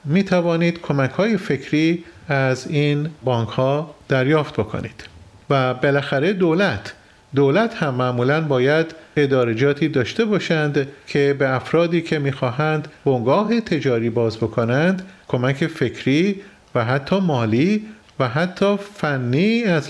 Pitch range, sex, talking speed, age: 125-170 Hz, male, 120 wpm, 40-59